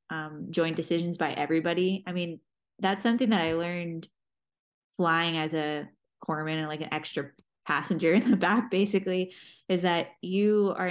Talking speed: 160 wpm